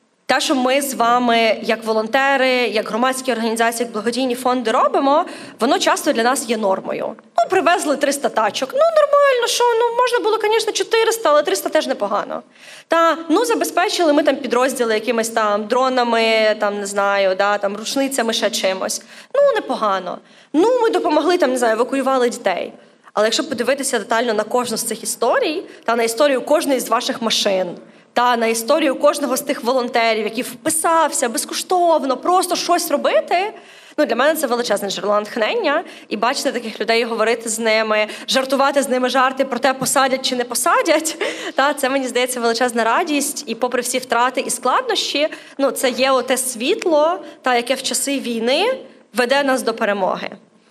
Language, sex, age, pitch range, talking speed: Ukrainian, female, 20-39, 230-310 Hz, 170 wpm